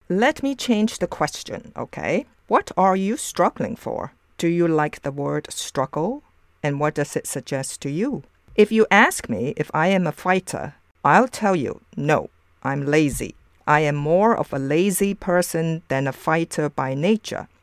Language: English